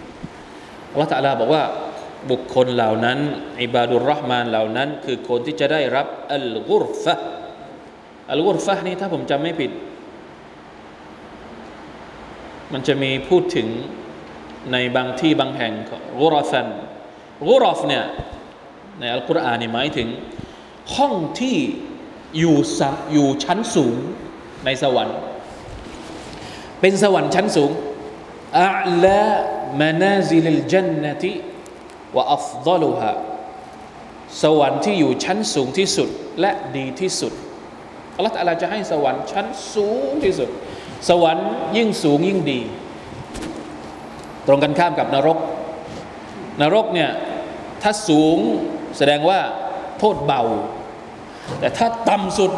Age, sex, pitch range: 20-39, male, 140-200 Hz